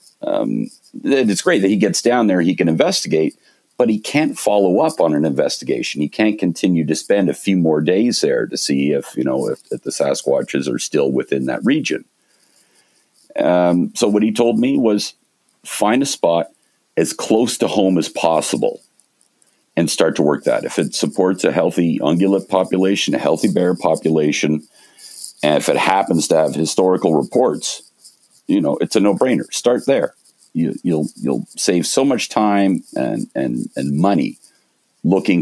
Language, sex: English, male